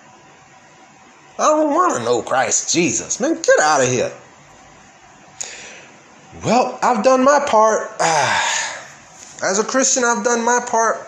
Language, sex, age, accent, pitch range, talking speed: English, male, 20-39, American, 130-210 Hz, 130 wpm